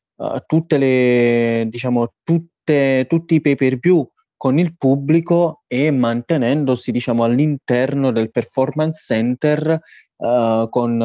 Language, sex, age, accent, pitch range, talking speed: Italian, male, 20-39, native, 120-140 Hz, 120 wpm